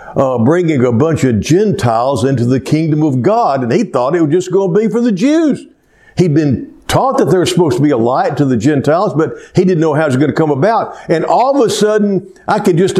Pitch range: 110-175 Hz